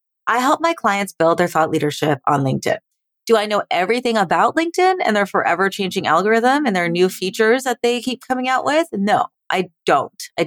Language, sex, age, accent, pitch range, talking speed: English, female, 30-49, American, 165-240 Hz, 200 wpm